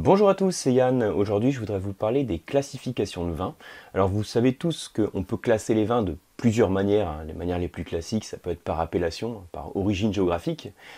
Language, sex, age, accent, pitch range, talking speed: French, male, 30-49, French, 95-130 Hz, 215 wpm